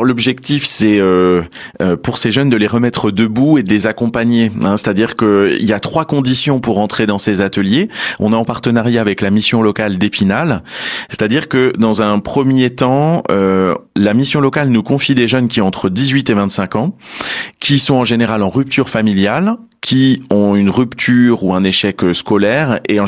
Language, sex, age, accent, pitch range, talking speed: French, male, 30-49, French, 100-125 Hz, 180 wpm